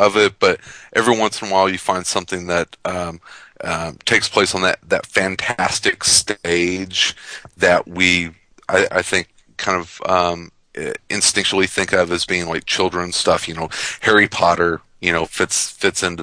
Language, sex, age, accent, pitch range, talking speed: English, male, 40-59, American, 80-90 Hz, 170 wpm